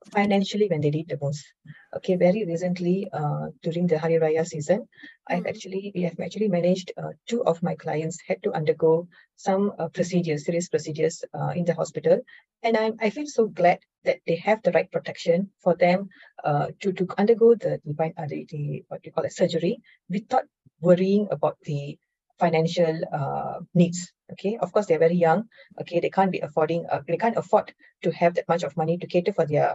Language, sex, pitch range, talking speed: English, female, 160-200 Hz, 195 wpm